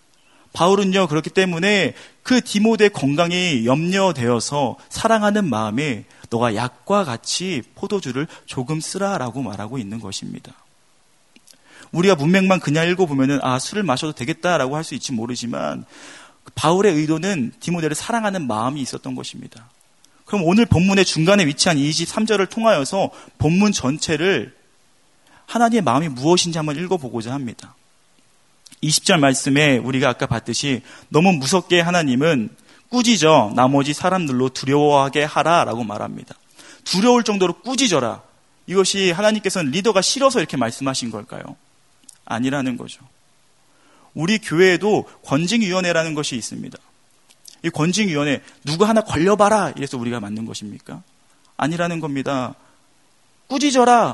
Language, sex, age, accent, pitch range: Korean, male, 30-49, native, 140-205 Hz